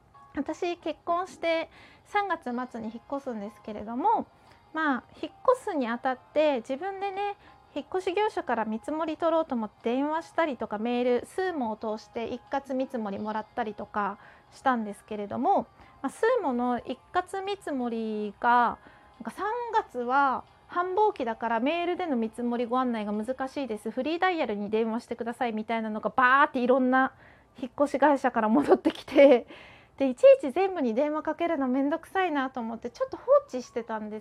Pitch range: 230-315 Hz